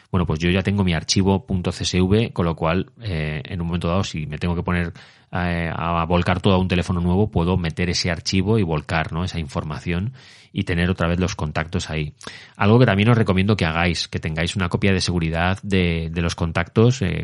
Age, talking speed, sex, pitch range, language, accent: 30-49, 220 wpm, male, 85-100 Hz, Spanish, Spanish